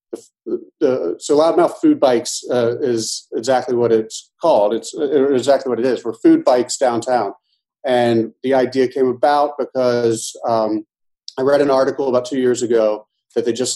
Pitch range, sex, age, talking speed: 115-135 Hz, male, 40-59, 175 wpm